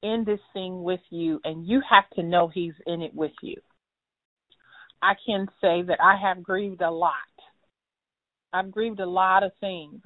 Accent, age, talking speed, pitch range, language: American, 40-59, 180 wpm, 175-210 Hz, English